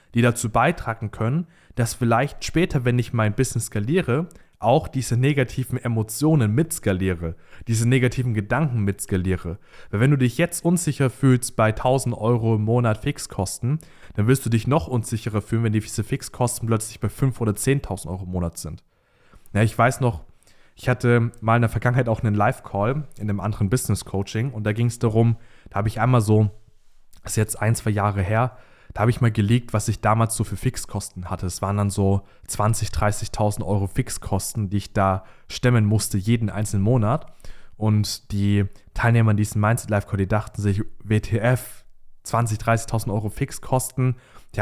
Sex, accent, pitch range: male, German, 105-125 Hz